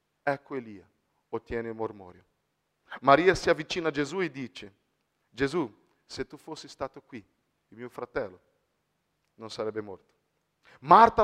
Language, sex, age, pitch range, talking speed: Italian, male, 40-59, 105-165 Hz, 135 wpm